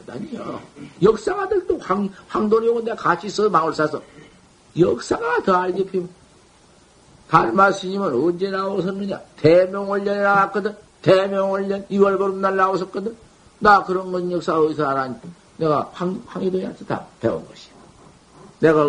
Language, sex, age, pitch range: Korean, male, 50-69, 155-200 Hz